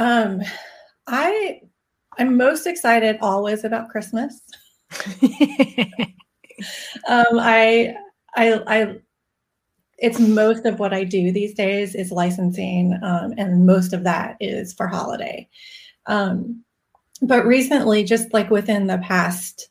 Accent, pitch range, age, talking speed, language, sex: American, 195-225 Hz, 30-49, 115 wpm, English, female